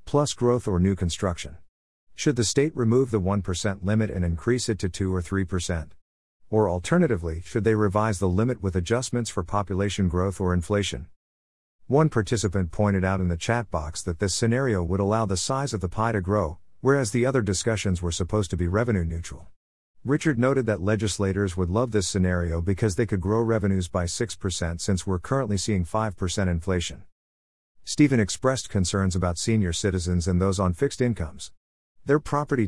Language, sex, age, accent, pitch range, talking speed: English, male, 50-69, American, 90-115 Hz, 180 wpm